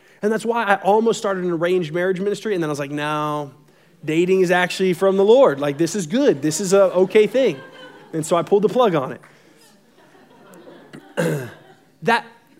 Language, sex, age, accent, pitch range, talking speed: English, male, 30-49, American, 170-230 Hz, 190 wpm